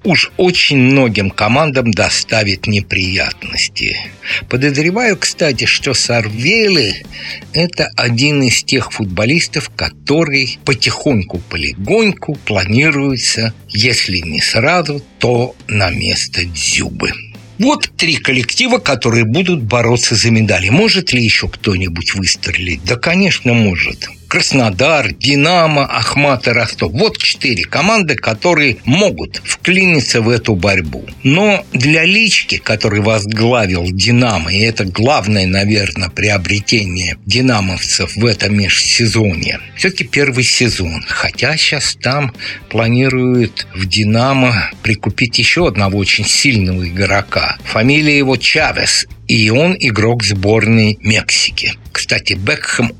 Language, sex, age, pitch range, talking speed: Russian, male, 60-79, 100-135 Hz, 110 wpm